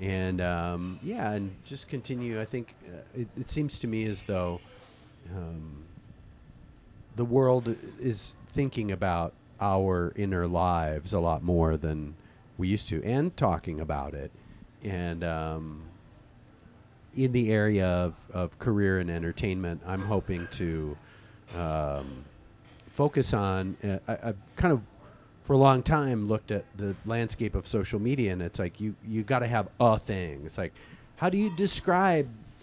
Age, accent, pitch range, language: 40-59, American, 95-125 Hz, English